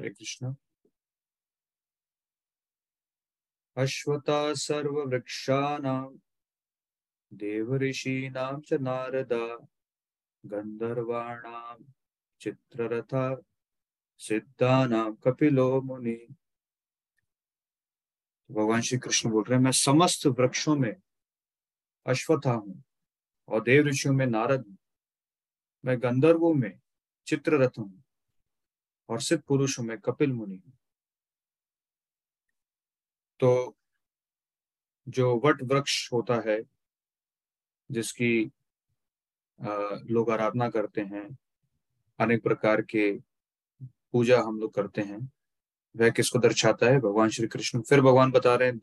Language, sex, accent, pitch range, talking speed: English, male, Indian, 115-140 Hz, 80 wpm